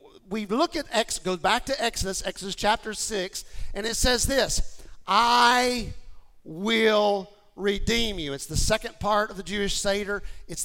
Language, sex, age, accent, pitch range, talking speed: English, male, 50-69, American, 195-240 Hz, 150 wpm